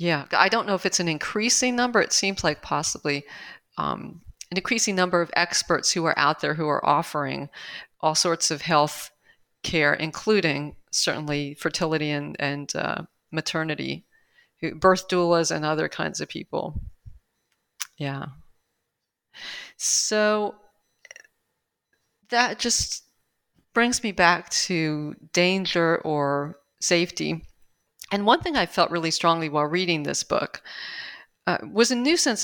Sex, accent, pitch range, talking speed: female, American, 155-205 Hz, 135 wpm